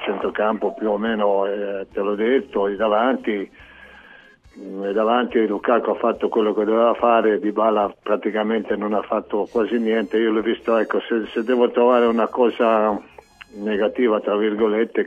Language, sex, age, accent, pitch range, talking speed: Italian, male, 50-69, native, 100-115 Hz, 160 wpm